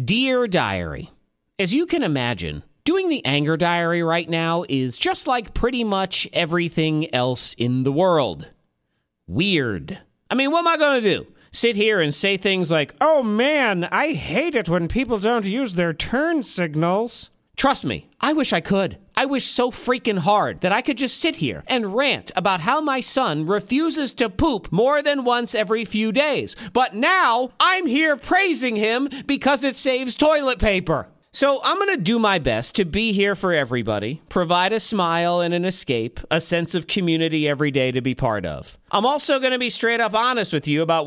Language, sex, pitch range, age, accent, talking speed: English, male, 160-250 Hz, 40-59, American, 190 wpm